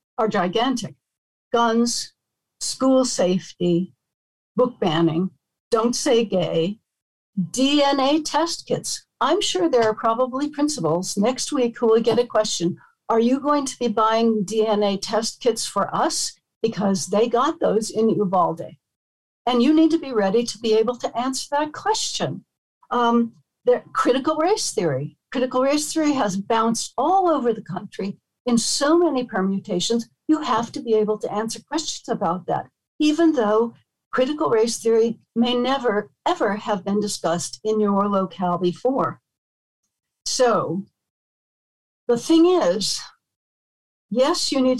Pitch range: 200-255 Hz